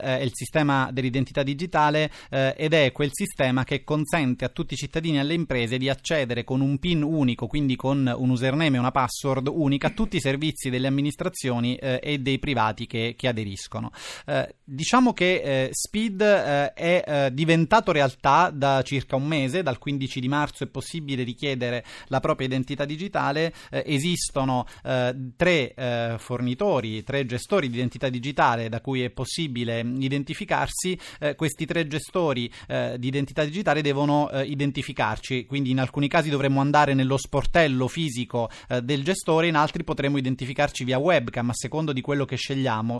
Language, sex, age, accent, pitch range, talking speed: Italian, male, 30-49, native, 130-155 Hz, 170 wpm